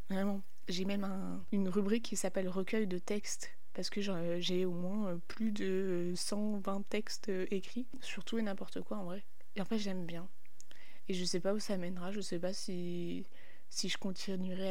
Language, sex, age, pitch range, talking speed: French, female, 20-39, 180-205 Hz, 190 wpm